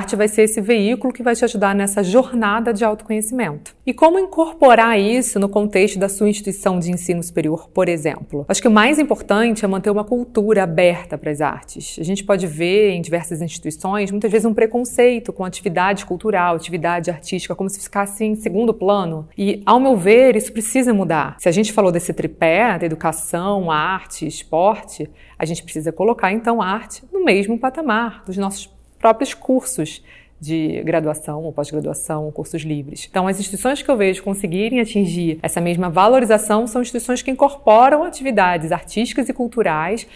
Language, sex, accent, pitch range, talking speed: Portuguese, female, Brazilian, 170-230 Hz, 180 wpm